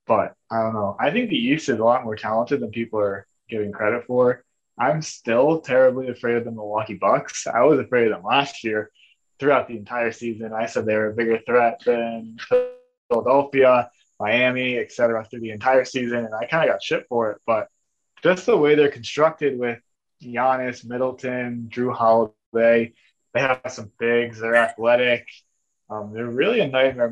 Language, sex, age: English, male, 20-39